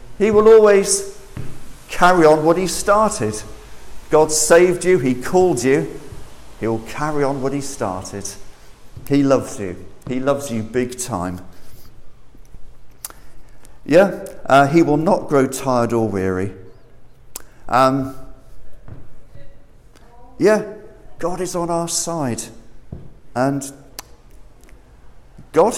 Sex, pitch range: male, 115-160 Hz